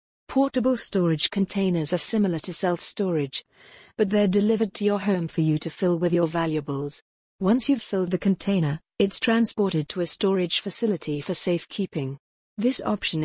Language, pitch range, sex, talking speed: English, 170-205 Hz, female, 160 wpm